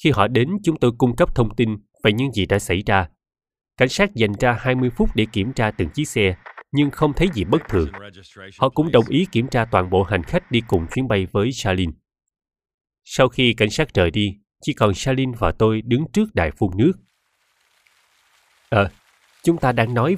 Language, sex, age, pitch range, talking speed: Vietnamese, male, 20-39, 100-135 Hz, 210 wpm